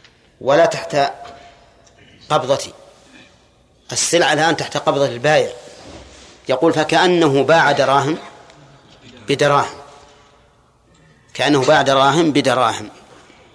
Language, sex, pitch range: Arabic, male, 135-160 Hz